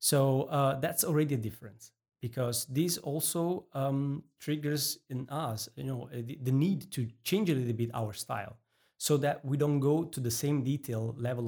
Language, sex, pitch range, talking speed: English, male, 110-140 Hz, 185 wpm